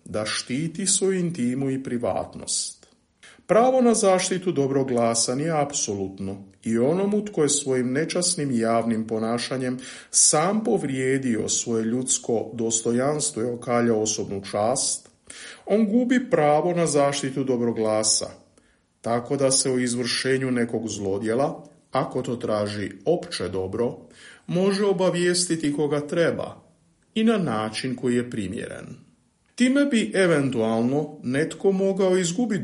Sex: male